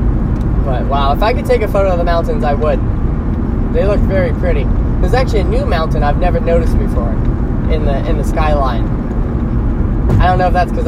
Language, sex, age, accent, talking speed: English, male, 10-29, American, 205 wpm